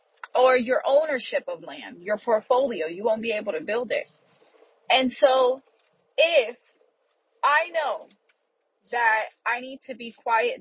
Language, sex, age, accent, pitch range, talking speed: English, female, 30-49, American, 210-280 Hz, 140 wpm